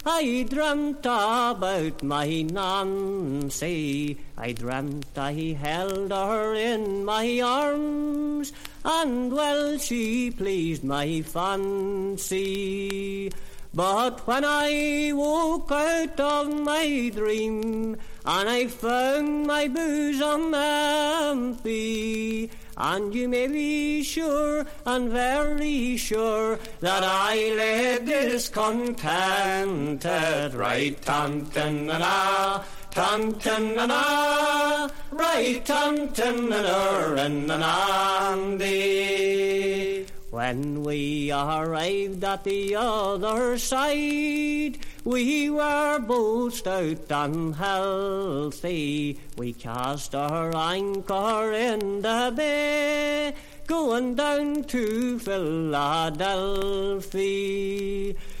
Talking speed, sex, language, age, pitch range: 80 wpm, male, English, 40-59, 190-285 Hz